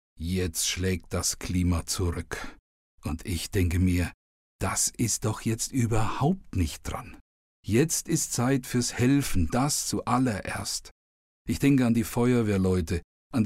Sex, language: male, German